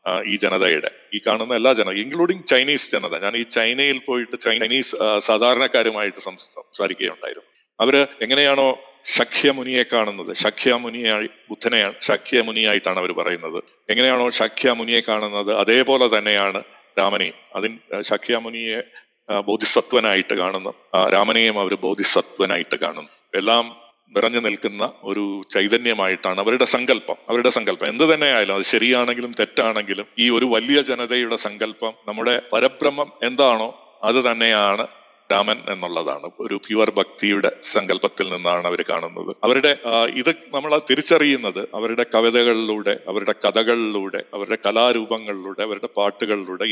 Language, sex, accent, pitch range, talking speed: Malayalam, male, native, 105-130 Hz, 115 wpm